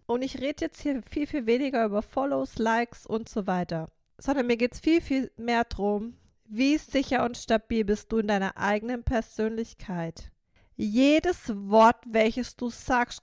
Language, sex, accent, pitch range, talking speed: German, female, German, 210-265 Hz, 170 wpm